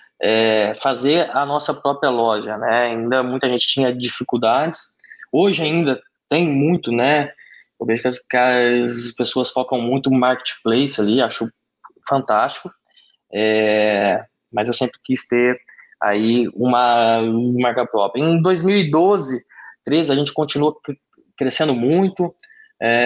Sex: male